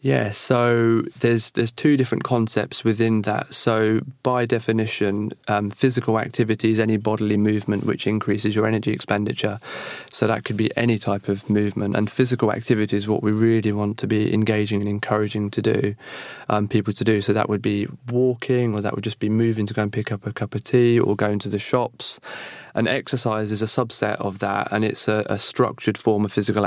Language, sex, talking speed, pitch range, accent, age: English, male, 205 wpm, 105-115 Hz, British, 20-39